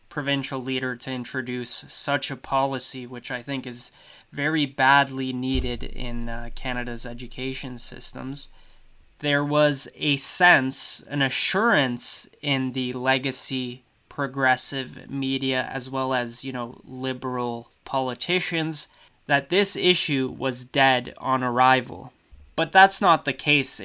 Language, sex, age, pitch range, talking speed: English, male, 20-39, 125-145 Hz, 125 wpm